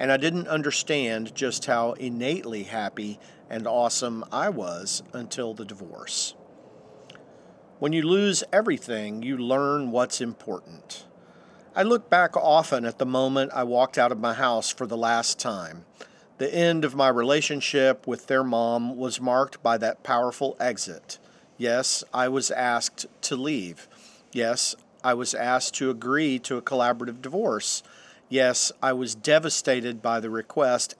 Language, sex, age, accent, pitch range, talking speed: English, male, 50-69, American, 120-145 Hz, 150 wpm